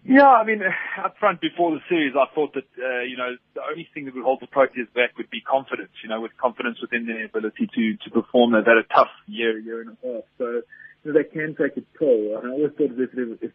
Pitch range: 120-150 Hz